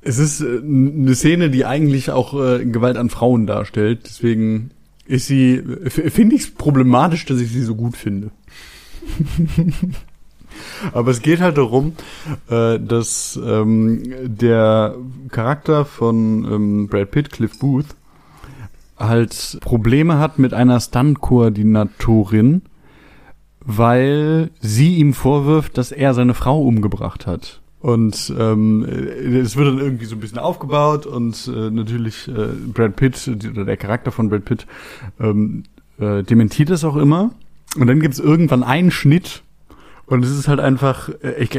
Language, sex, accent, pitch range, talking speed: German, male, German, 115-150 Hz, 145 wpm